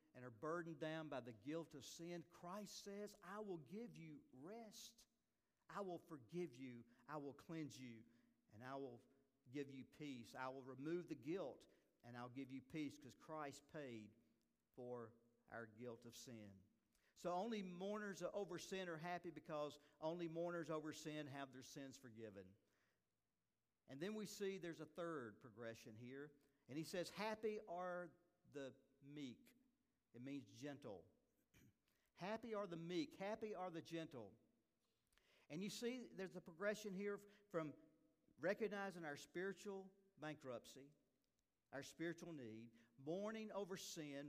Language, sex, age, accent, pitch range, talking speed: English, male, 50-69, American, 135-195 Hz, 150 wpm